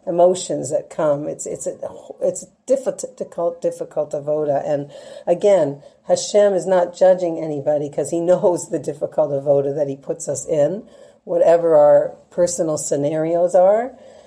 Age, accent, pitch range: 50-69, American, 145-180 Hz